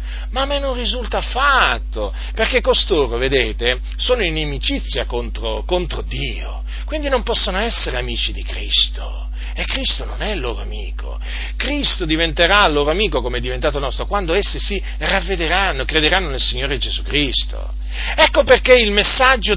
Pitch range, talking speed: 155-245 Hz, 155 wpm